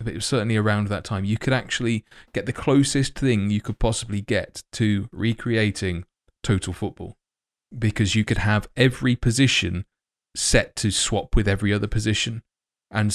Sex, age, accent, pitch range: male, 20-39, British, 95-115 Hz